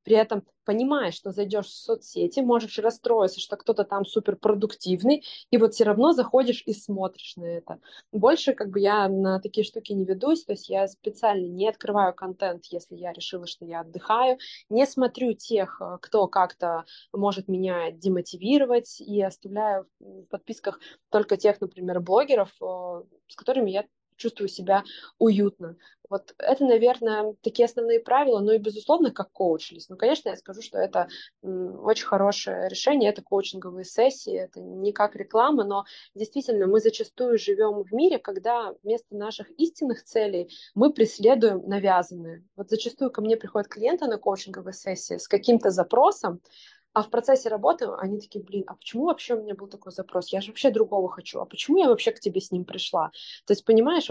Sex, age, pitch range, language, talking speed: female, 20-39, 190-235 Hz, Russian, 170 wpm